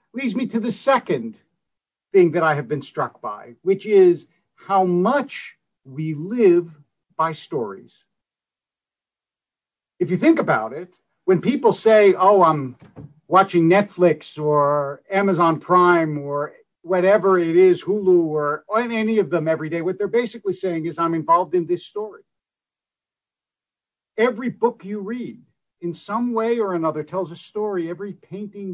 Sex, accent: male, American